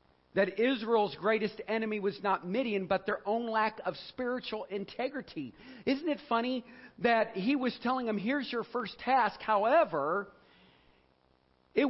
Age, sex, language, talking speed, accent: 50-69, male, English, 140 wpm, American